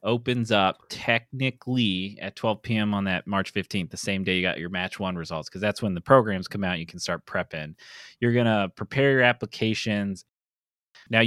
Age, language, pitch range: 30-49, English, 95-125 Hz